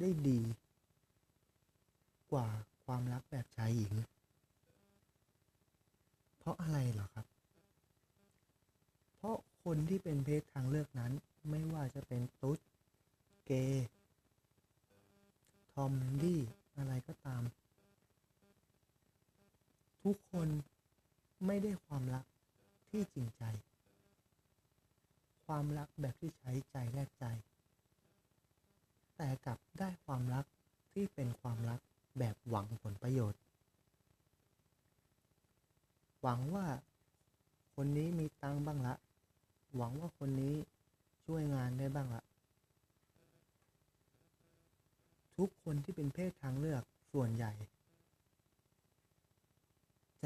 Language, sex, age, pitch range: Thai, male, 30-49, 115-140 Hz